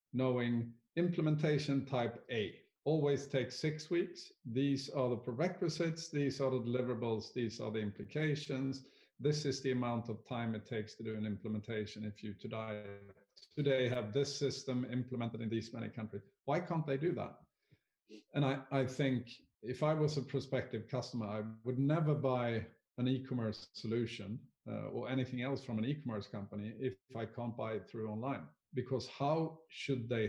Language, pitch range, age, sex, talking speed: English, 115-140 Hz, 50-69, male, 170 wpm